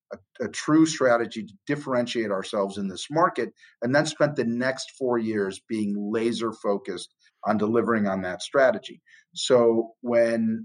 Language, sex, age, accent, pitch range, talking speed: English, male, 40-59, American, 100-120 Hz, 150 wpm